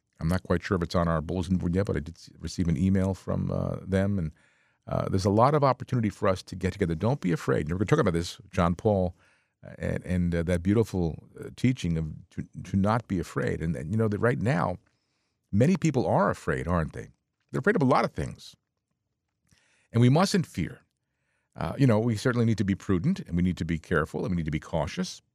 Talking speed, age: 240 wpm, 50-69